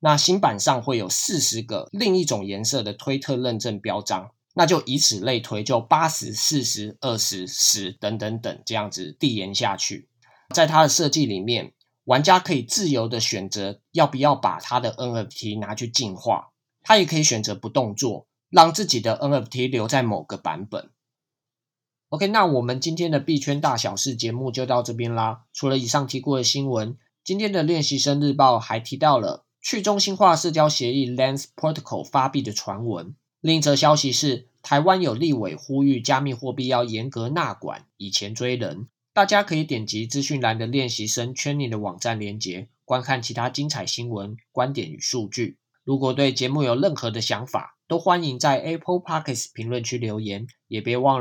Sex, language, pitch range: male, Chinese, 115-145 Hz